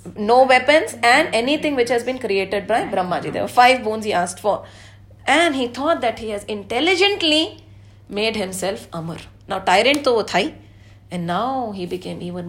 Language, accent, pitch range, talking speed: English, Indian, 190-265 Hz, 170 wpm